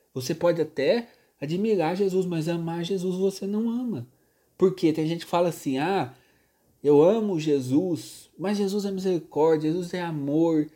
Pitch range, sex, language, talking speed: 125-175 Hz, male, Portuguese, 160 wpm